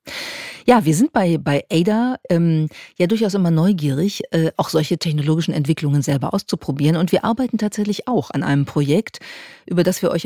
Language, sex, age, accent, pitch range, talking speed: German, female, 40-59, German, 155-195 Hz, 175 wpm